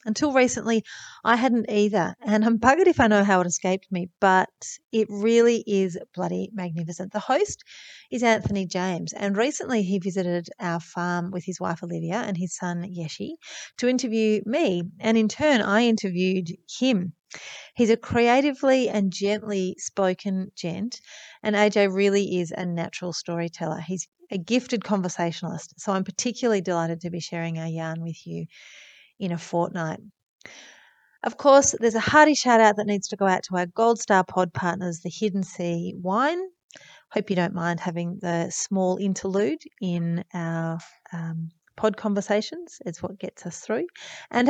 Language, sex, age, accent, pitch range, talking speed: English, female, 30-49, Australian, 175-230 Hz, 165 wpm